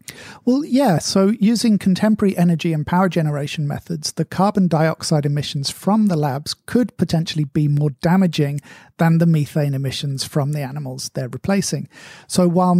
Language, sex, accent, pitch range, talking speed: English, male, British, 145-175 Hz, 155 wpm